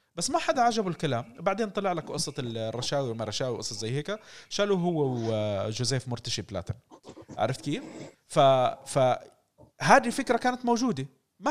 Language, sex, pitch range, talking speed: Arabic, male, 150-220 Hz, 150 wpm